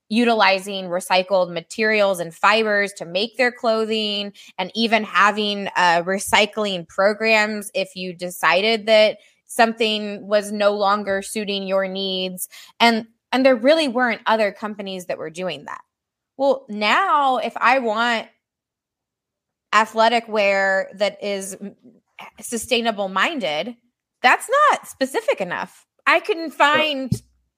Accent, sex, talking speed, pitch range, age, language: American, female, 115 wpm, 195-235 Hz, 20-39, English